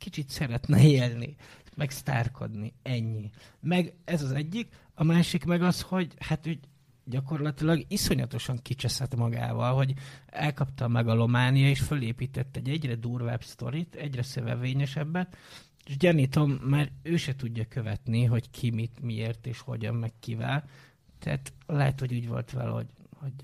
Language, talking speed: Hungarian, 140 wpm